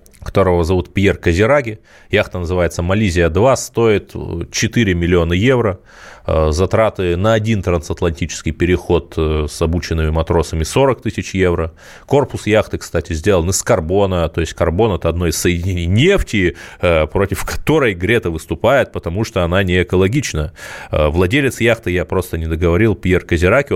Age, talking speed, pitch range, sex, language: 20-39, 135 wpm, 85-110 Hz, male, Russian